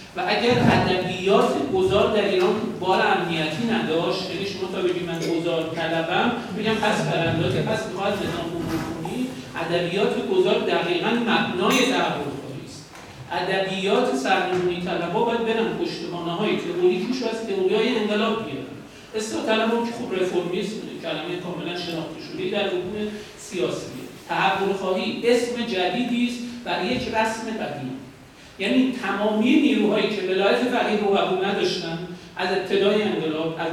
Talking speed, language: 135 wpm, Persian